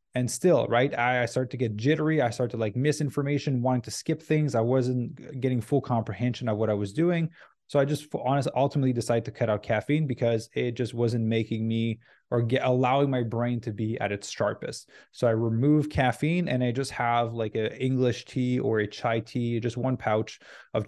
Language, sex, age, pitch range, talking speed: English, male, 20-39, 115-135 Hz, 205 wpm